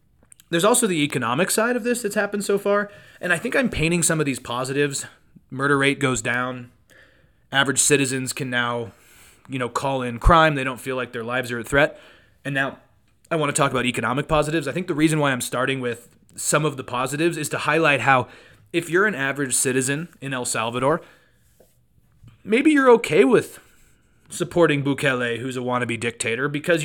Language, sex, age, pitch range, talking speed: English, male, 30-49, 125-165 Hz, 190 wpm